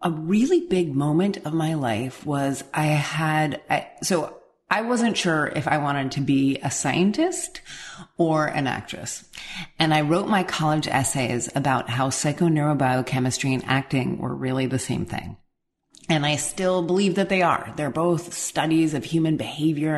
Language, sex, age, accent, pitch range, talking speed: English, female, 30-49, American, 135-160 Hz, 160 wpm